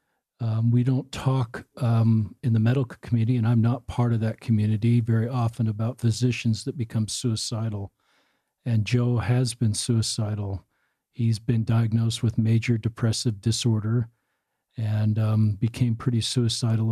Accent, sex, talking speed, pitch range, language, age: American, male, 140 wpm, 115-125 Hz, English, 50-69